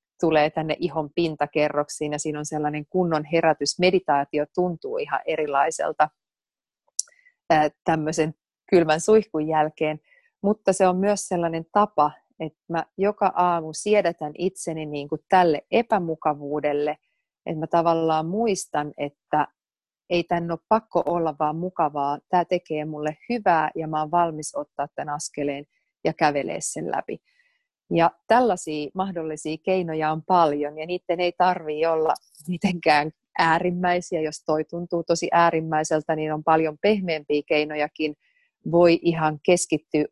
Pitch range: 155-180 Hz